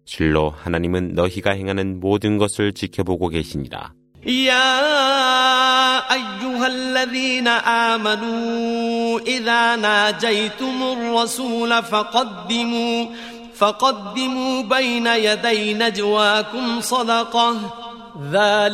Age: 30-49